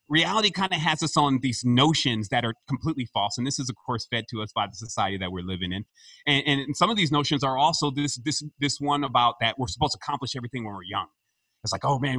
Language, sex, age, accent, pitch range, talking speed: English, male, 30-49, American, 120-160 Hz, 260 wpm